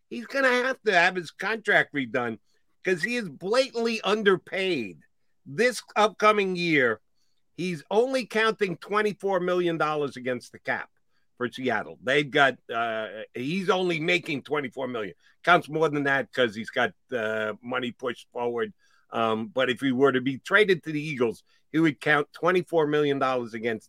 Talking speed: 160 wpm